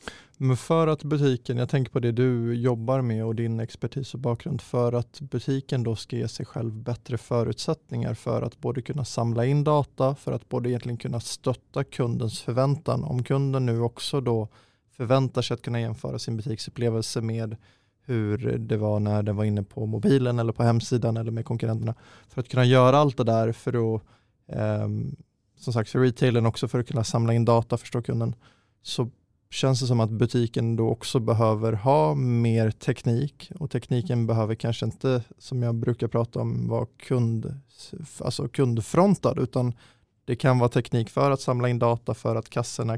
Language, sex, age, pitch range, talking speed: Swedish, male, 20-39, 115-130 Hz, 185 wpm